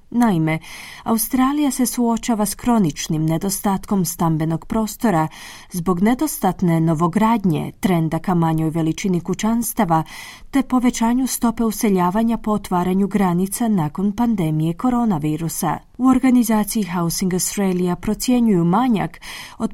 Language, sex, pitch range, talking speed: Croatian, female, 175-235 Hz, 100 wpm